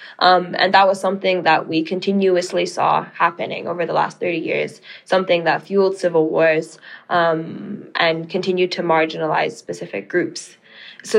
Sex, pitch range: female, 175-200 Hz